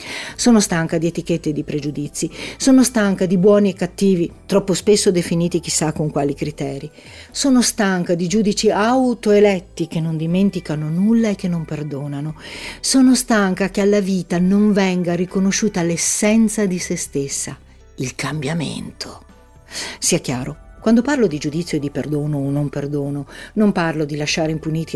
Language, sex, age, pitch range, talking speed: Italian, female, 50-69, 155-200 Hz, 155 wpm